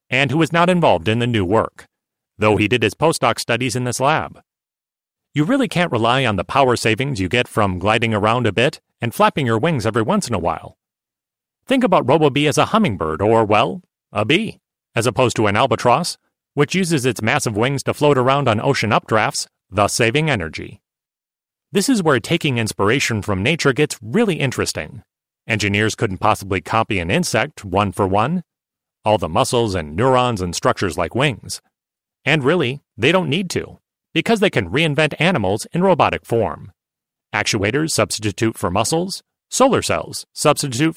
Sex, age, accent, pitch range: male, 40-59, American, 110-150 Hz